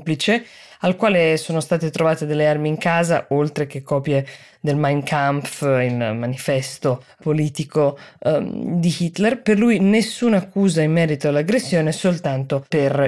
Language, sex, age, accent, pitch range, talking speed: Italian, female, 20-39, native, 145-195 Hz, 135 wpm